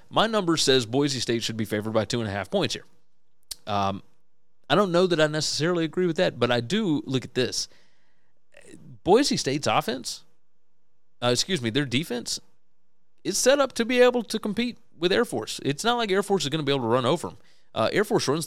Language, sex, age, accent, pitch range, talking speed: English, male, 30-49, American, 120-170 Hz, 220 wpm